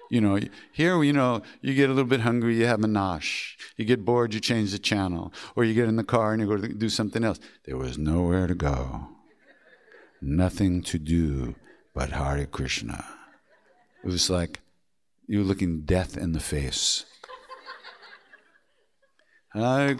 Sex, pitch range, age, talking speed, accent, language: male, 95-130 Hz, 60-79, 170 wpm, American, English